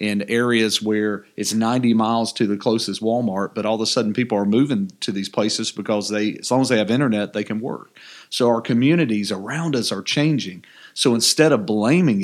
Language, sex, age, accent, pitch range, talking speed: English, male, 40-59, American, 105-130 Hz, 210 wpm